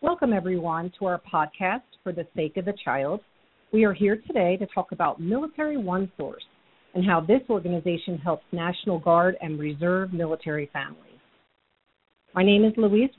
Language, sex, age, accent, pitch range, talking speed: English, female, 50-69, American, 170-220 Hz, 165 wpm